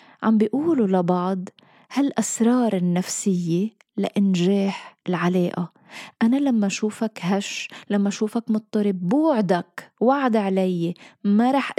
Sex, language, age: female, Arabic, 20-39